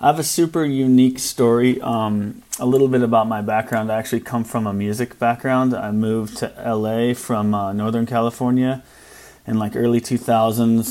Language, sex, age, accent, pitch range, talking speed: English, male, 30-49, American, 110-120 Hz, 175 wpm